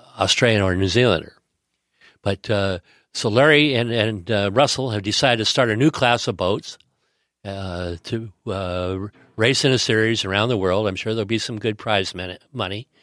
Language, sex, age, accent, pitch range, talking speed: English, male, 50-69, American, 100-120 Hz, 185 wpm